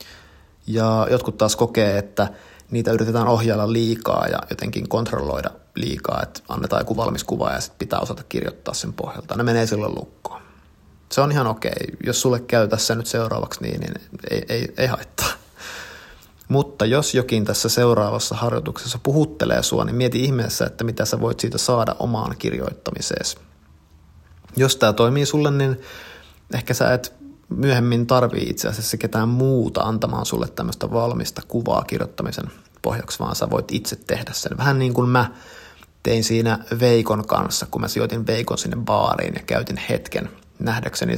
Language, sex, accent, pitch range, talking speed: Finnish, male, native, 85-125 Hz, 155 wpm